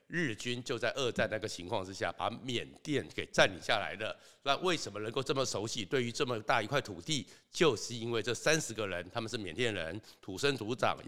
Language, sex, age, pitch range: Chinese, male, 60-79, 110-150 Hz